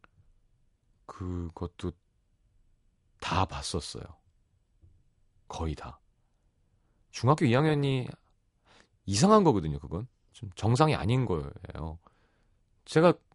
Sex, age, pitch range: male, 30-49, 90-120 Hz